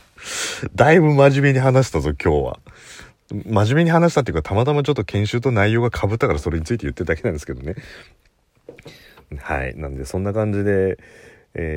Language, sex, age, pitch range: Japanese, male, 40-59, 75-100 Hz